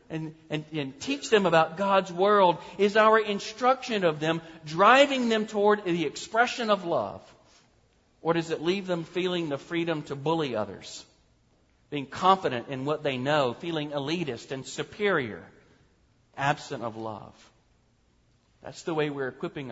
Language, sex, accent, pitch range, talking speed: English, male, American, 125-185 Hz, 150 wpm